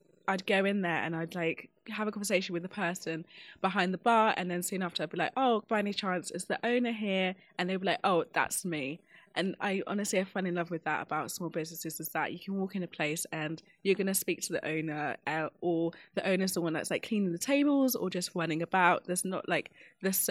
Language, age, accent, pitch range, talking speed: English, 20-39, British, 165-190 Hz, 250 wpm